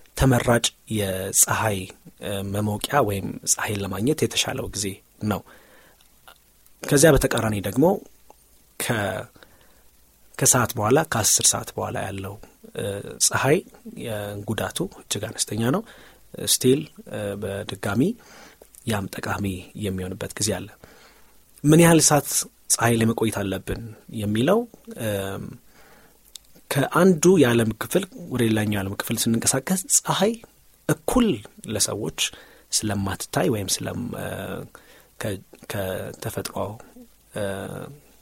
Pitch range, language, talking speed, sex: 100-130 Hz, Amharic, 75 wpm, male